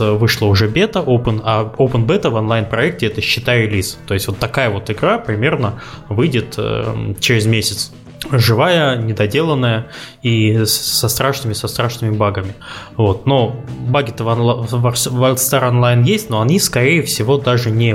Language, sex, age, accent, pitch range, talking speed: Russian, male, 20-39, native, 110-130 Hz, 155 wpm